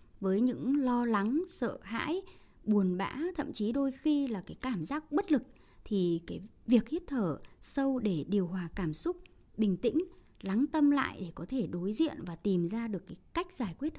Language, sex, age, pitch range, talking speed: Vietnamese, male, 20-39, 175-255 Hz, 200 wpm